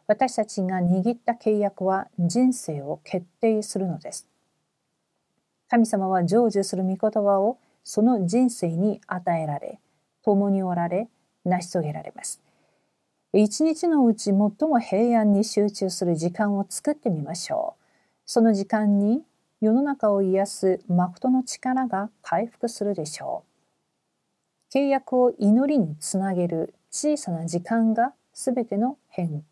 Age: 50-69